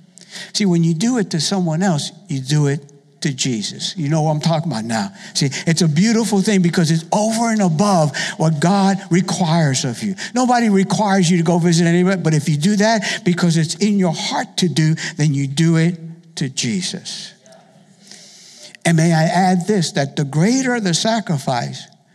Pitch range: 155-195 Hz